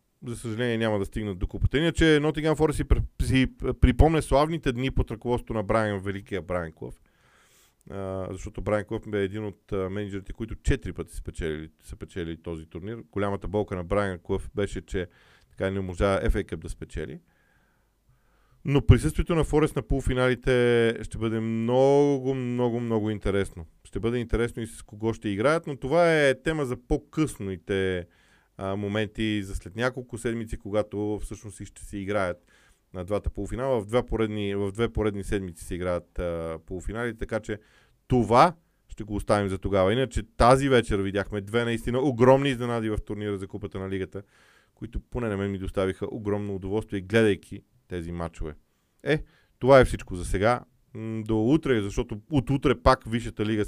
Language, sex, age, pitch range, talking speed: Bulgarian, male, 40-59, 95-120 Hz, 165 wpm